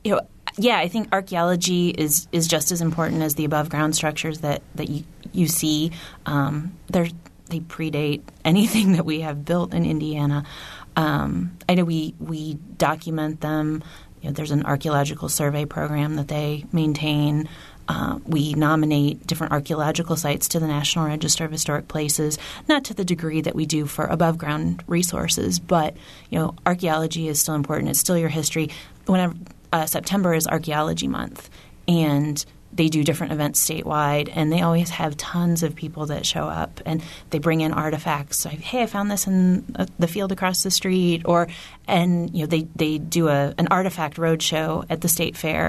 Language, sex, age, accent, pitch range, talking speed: English, female, 30-49, American, 155-180 Hz, 180 wpm